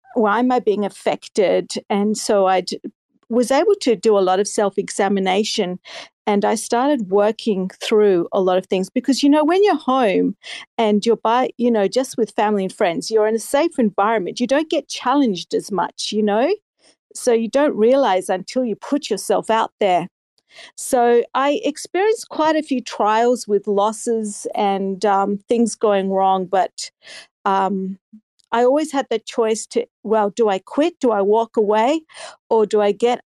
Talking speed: 180 wpm